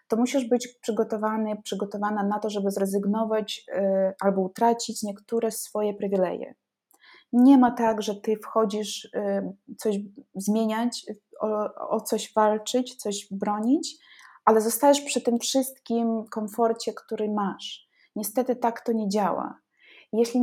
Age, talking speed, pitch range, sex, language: 20-39, 130 wpm, 210-245 Hz, female, Polish